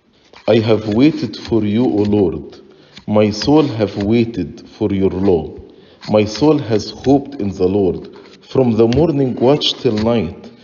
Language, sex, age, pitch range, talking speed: English, male, 50-69, 105-130 Hz, 150 wpm